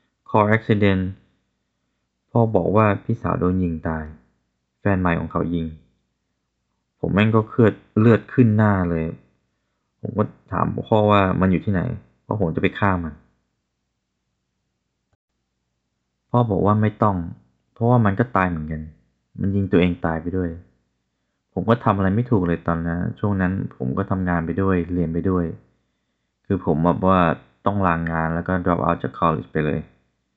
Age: 20-39